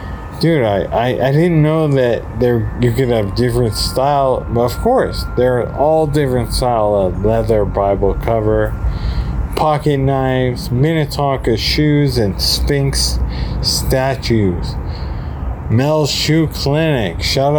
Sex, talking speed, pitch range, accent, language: male, 125 wpm, 105-145 Hz, American, English